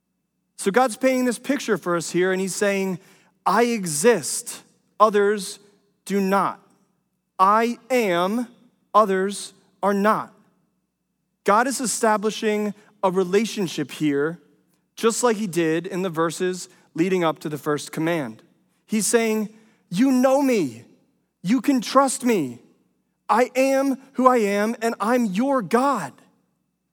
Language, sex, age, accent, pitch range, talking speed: English, male, 30-49, American, 170-220 Hz, 130 wpm